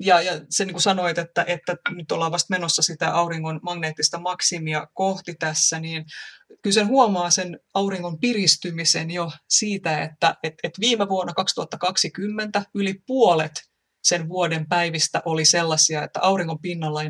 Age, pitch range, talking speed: 30-49, 160-180 Hz, 155 wpm